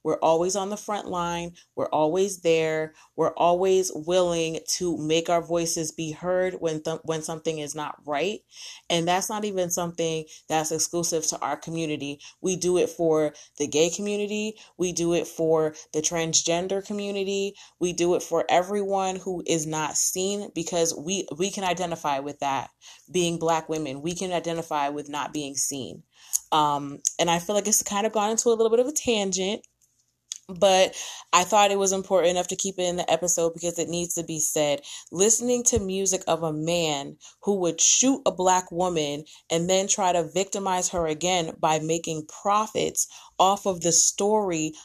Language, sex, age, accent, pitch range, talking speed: English, female, 30-49, American, 160-190 Hz, 180 wpm